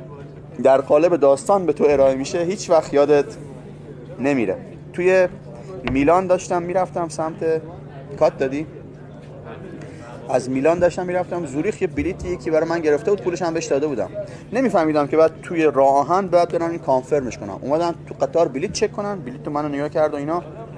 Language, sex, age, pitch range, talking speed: Persian, male, 30-49, 140-170 Hz, 170 wpm